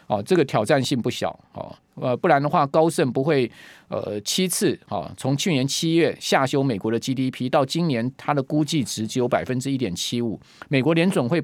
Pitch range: 120-155 Hz